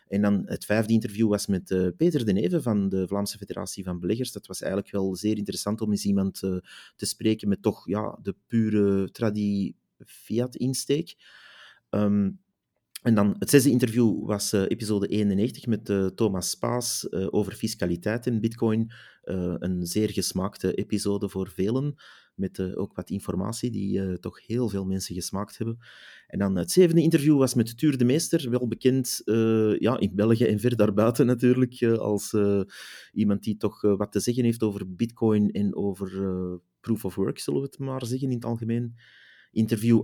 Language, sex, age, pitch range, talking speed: Dutch, male, 30-49, 100-120 Hz, 180 wpm